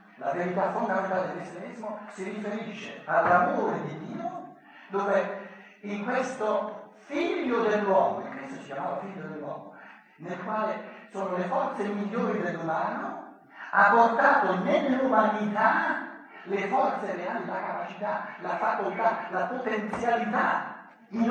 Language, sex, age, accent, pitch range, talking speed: Italian, male, 60-79, native, 190-230 Hz, 115 wpm